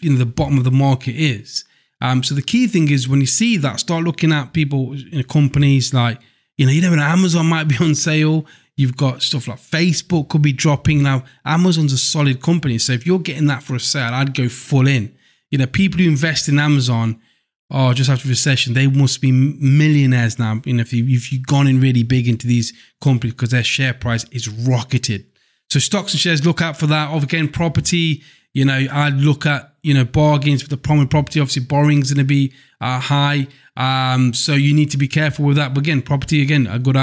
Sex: male